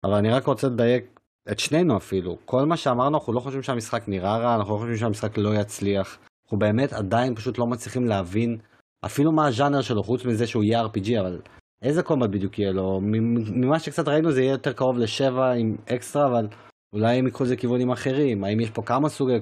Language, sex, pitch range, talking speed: Hebrew, male, 105-130 Hz, 205 wpm